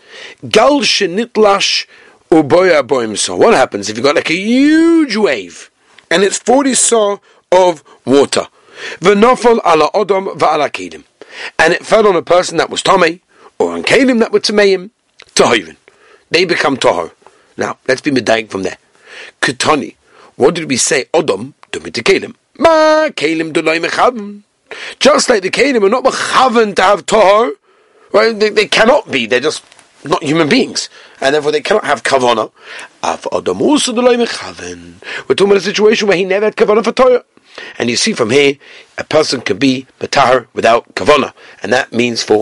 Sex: male